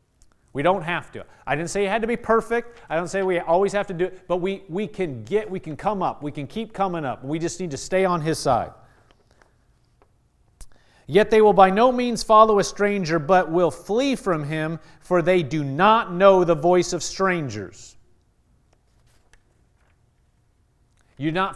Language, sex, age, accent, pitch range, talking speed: English, male, 40-59, American, 125-180 Hz, 180 wpm